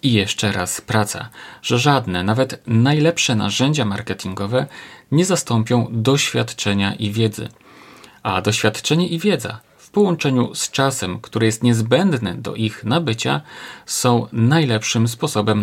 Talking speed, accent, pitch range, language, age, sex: 125 wpm, native, 105-130 Hz, Polish, 40-59, male